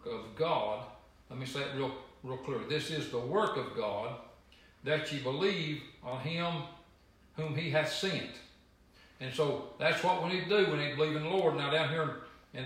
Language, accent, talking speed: English, American, 205 wpm